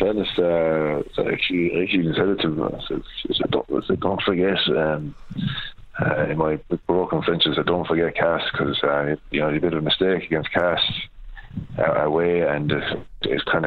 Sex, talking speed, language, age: male, 150 wpm, English, 30-49